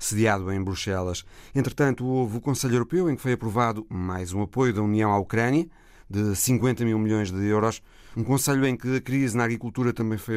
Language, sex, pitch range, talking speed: Portuguese, male, 105-130 Hz, 205 wpm